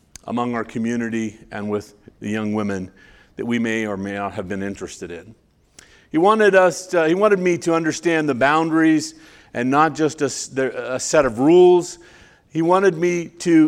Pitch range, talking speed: 135-170 Hz, 180 wpm